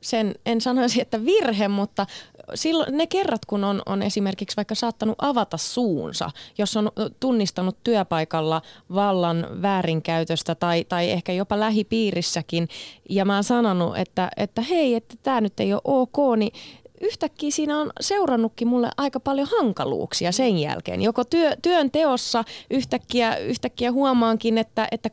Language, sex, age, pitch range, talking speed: Finnish, female, 30-49, 180-240 Hz, 145 wpm